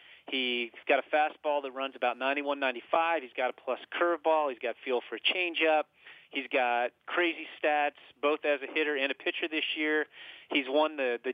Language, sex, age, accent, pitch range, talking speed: English, male, 40-59, American, 140-170 Hz, 190 wpm